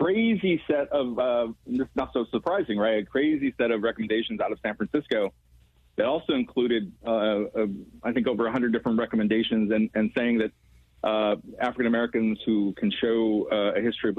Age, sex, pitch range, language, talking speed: 40-59, male, 105-125 Hz, English, 180 wpm